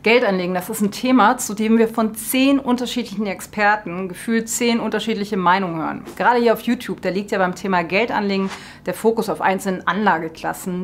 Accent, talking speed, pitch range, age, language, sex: German, 175 wpm, 180-230 Hz, 30-49, German, female